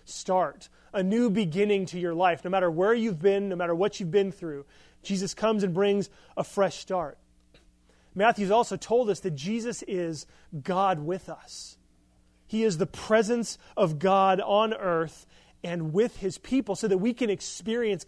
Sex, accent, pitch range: male, American, 130-200 Hz